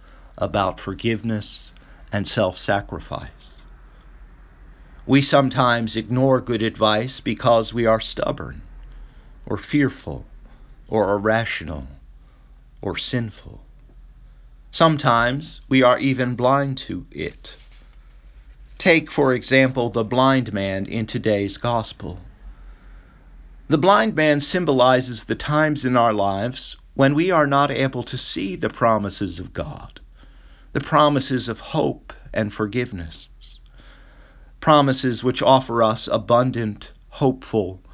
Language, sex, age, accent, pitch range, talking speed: English, male, 50-69, American, 100-135 Hz, 105 wpm